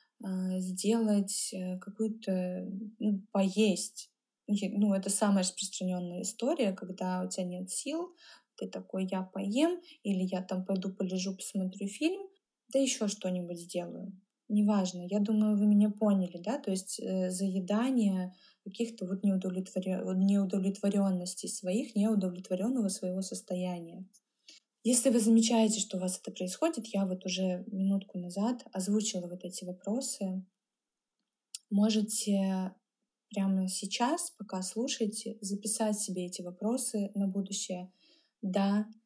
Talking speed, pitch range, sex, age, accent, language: 115 wpm, 185-220 Hz, female, 20-39, native, Russian